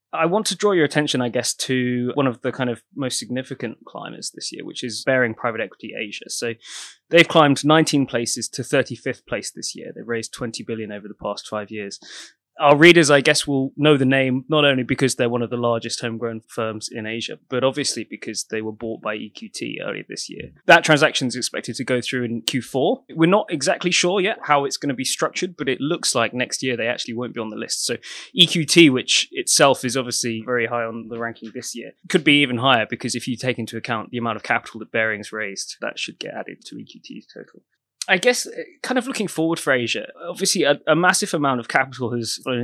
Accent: British